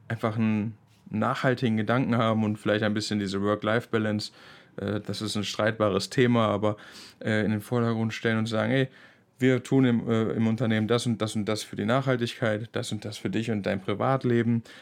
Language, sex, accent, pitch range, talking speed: German, male, German, 105-120 Hz, 180 wpm